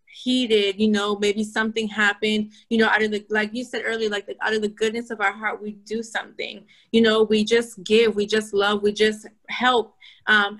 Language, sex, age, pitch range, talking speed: English, female, 20-39, 205-235 Hz, 220 wpm